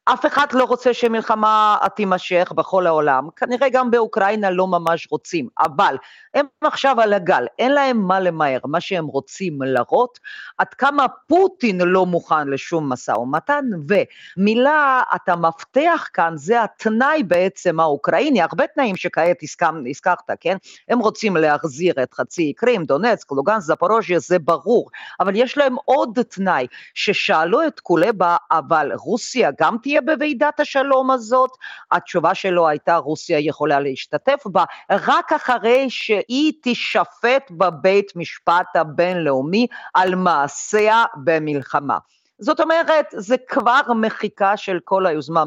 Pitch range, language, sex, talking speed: 165-255 Hz, Hebrew, female, 130 wpm